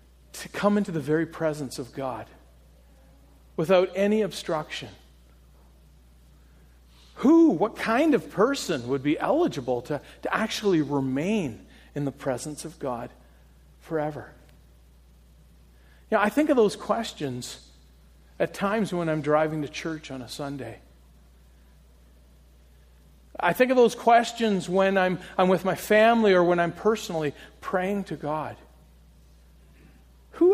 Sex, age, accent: male, 50-69, American